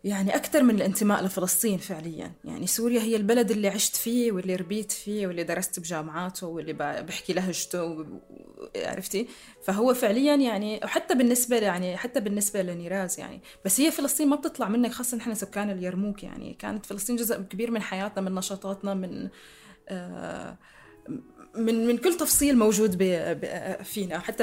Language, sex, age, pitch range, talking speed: Arabic, female, 20-39, 185-235 Hz, 160 wpm